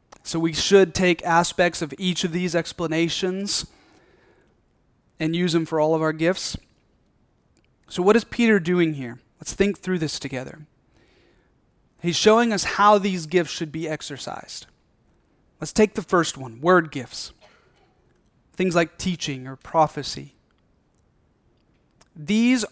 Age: 30-49